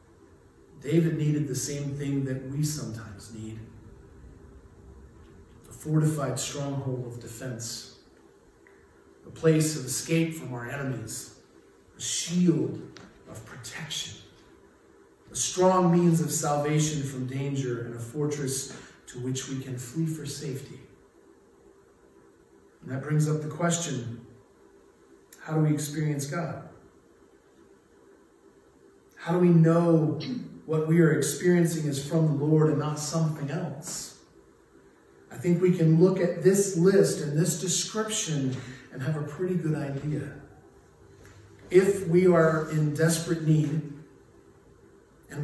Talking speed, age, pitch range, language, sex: 125 wpm, 40-59, 110-165 Hz, English, male